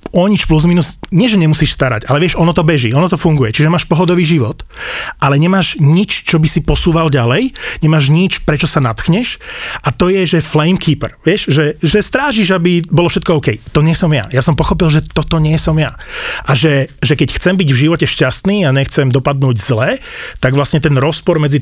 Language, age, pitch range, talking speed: Slovak, 30-49, 135-165 Hz, 210 wpm